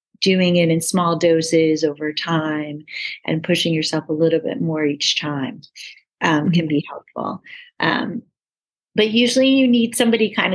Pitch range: 165-195 Hz